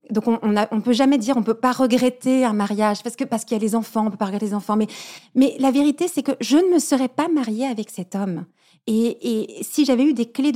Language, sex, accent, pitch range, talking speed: French, female, French, 210-270 Hz, 285 wpm